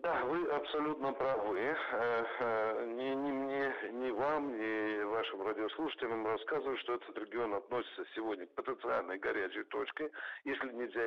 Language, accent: Russian, native